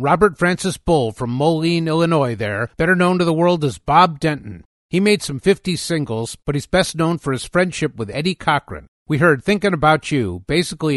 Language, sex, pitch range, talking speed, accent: English, male, 130-175 Hz, 195 wpm, American